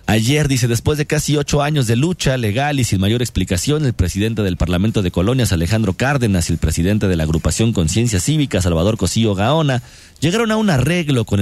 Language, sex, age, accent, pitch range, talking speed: Spanish, male, 40-59, Mexican, 85-120 Hz, 200 wpm